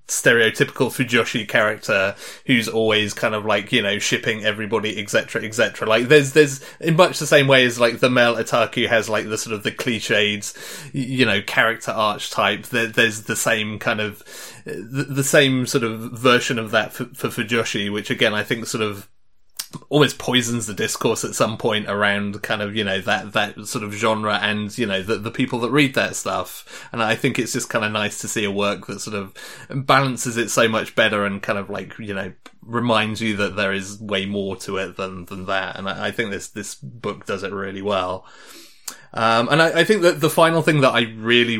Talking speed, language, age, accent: 215 wpm, English, 30-49, British